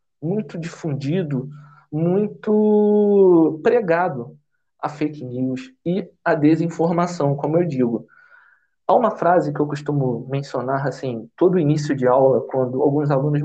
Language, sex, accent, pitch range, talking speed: Portuguese, male, Brazilian, 140-200 Hz, 125 wpm